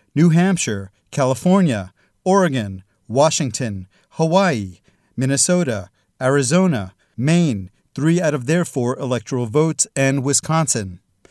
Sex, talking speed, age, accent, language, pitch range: male, 95 wpm, 40-59, American, English, 130-160 Hz